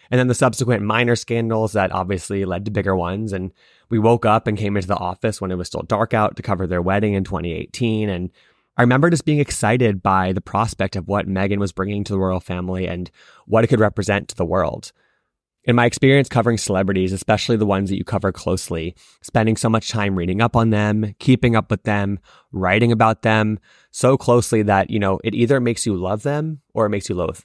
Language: English